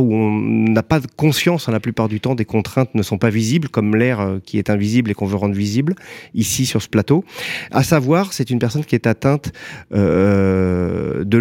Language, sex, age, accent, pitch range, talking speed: French, male, 30-49, French, 115-145 Hz, 205 wpm